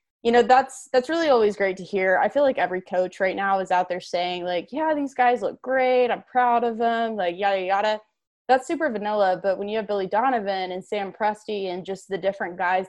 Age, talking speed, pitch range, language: 20-39, 235 wpm, 180-225 Hz, English